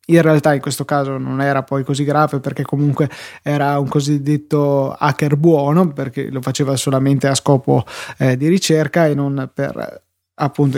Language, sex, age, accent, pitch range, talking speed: Italian, male, 20-39, native, 145-165 Hz, 165 wpm